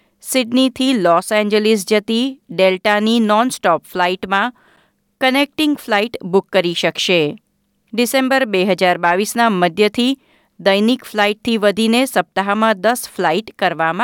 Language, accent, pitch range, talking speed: Gujarati, native, 185-235 Hz, 105 wpm